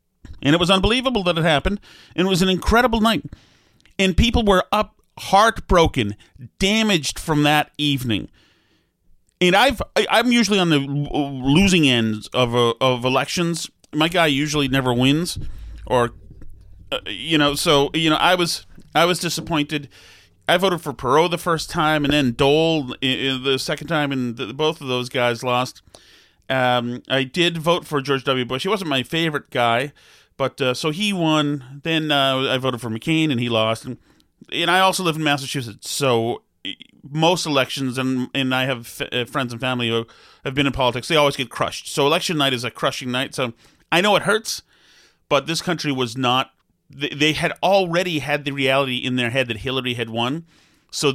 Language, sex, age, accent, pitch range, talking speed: English, male, 40-59, American, 125-165 Hz, 180 wpm